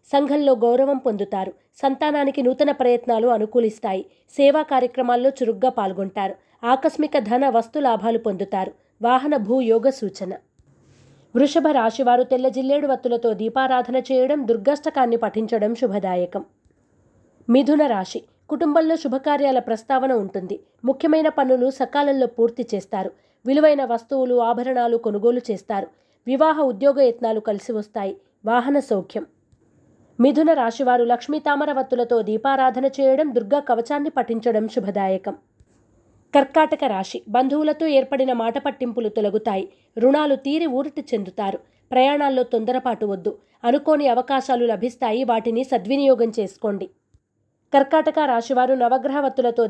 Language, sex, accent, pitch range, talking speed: Telugu, female, native, 225-275 Hz, 100 wpm